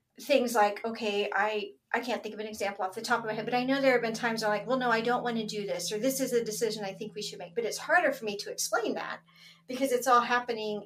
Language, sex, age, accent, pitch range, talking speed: English, female, 40-59, American, 205-245 Hz, 310 wpm